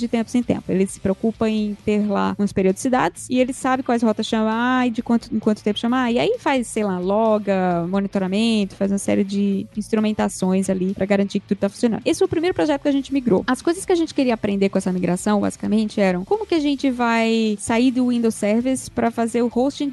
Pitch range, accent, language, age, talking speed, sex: 205-265 Hz, Brazilian, Portuguese, 10-29, 230 wpm, female